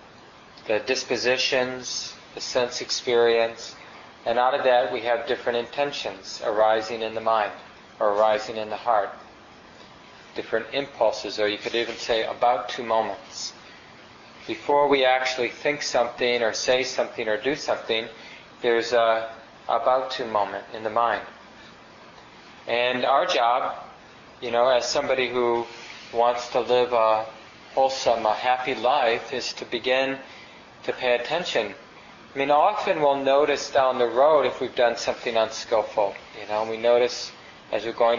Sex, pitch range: male, 115-130 Hz